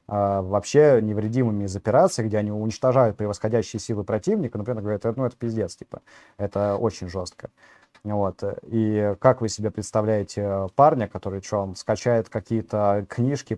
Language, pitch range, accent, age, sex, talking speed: Russian, 100-115 Hz, native, 20-39, male, 140 wpm